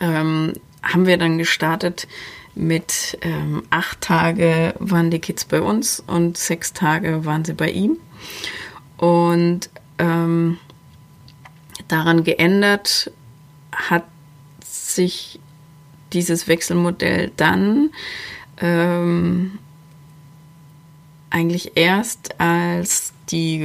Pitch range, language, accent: 160-180 Hz, German, German